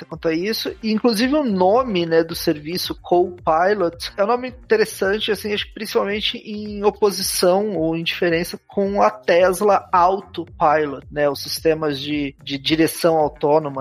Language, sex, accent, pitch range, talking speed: Portuguese, male, Brazilian, 160-220 Hz, 140 wpm